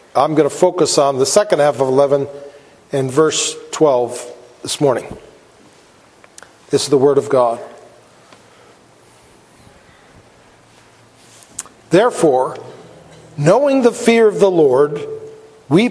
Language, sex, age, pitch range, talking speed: English, male, 50-69, 150-215 Hz, 110 wpm